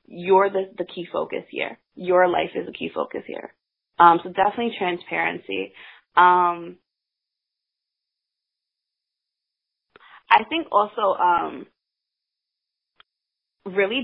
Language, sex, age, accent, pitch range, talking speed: English, female, 20-39, American, 175-200 Hz, 100 wpm